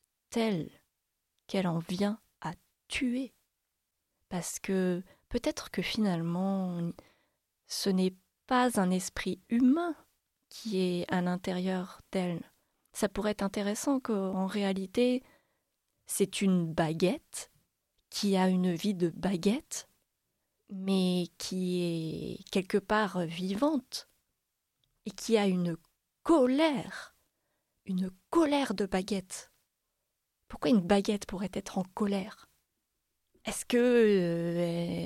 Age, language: 30-49, French